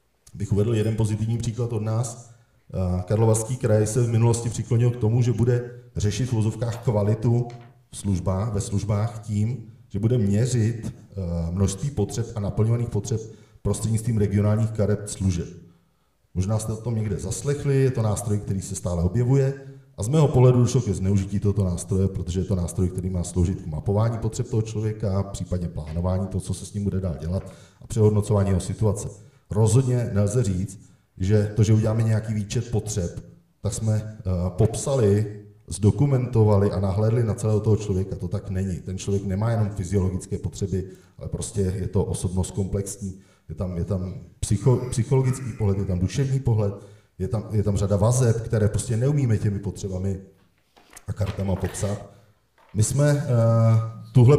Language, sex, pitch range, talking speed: Czech, male, 100-120 Hz, 160 wpm